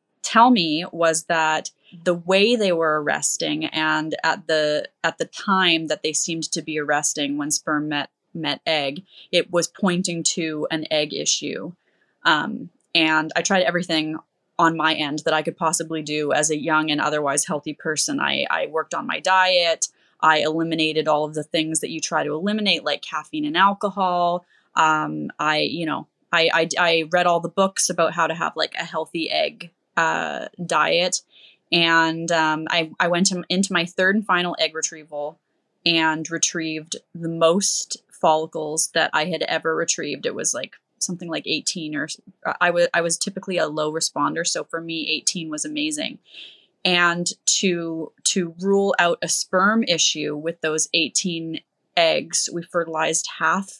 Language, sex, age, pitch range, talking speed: English, female, 20-39, 155-180 Hz, 170 wpm